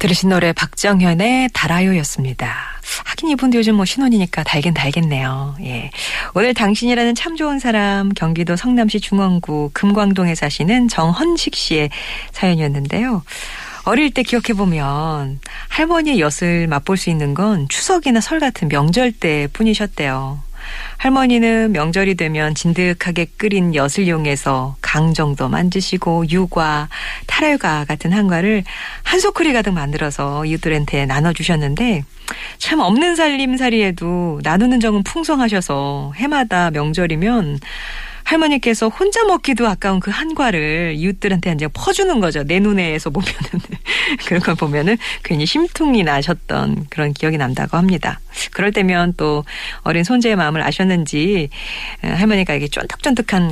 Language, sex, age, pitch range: Korean, female, 40-59, 155-230 Hz